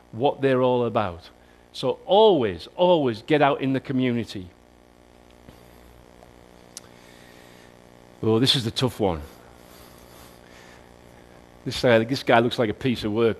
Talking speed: 130 wpm